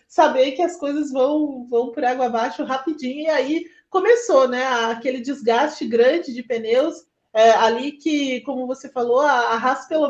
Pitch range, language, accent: 245-320 Hz, Portuguese, Brazilian